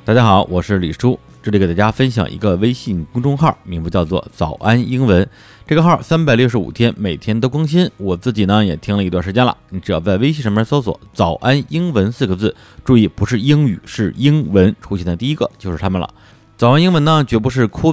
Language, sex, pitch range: Chinese, male, 95-130 Hz